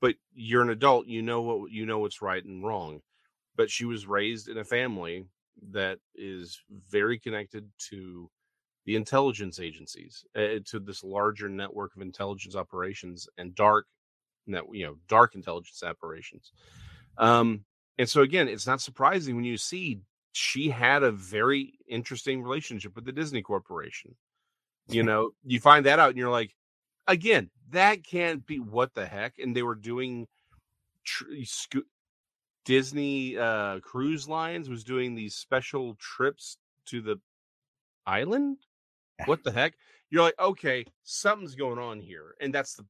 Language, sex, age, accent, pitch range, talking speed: English, male, 40-59, American, 105-140 Hz, 155 wpm